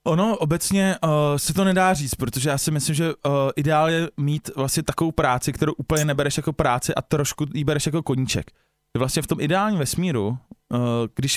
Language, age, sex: Slovak, 20-39, male